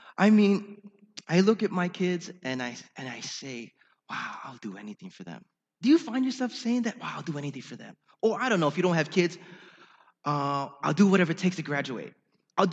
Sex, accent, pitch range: male, American, 140-225 Hz